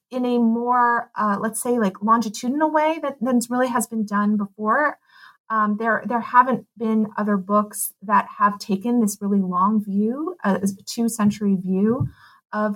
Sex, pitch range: female, 195-230 Hz